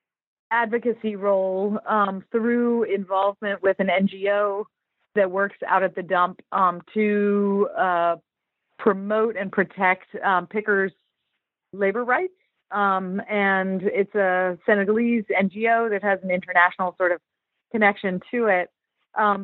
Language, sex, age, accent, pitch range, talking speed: English, female, 40-59, American, 180-205 Hz, 125 wpm